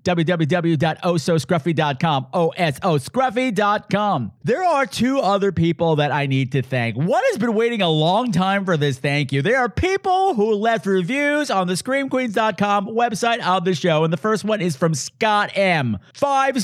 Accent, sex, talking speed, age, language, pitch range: American, male, 175 wpm, 50-69, English, 160-245 Hz